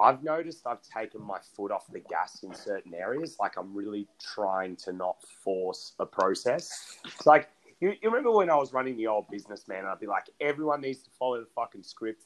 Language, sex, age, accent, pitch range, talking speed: English, male, 30-49, Australian, 110-160 Hz, 215 wpm